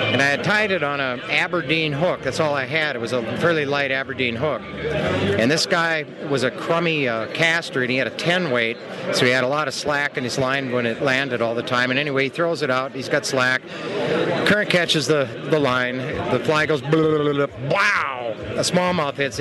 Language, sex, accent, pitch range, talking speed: English, male, American, 130-165 Hz, 220 wpm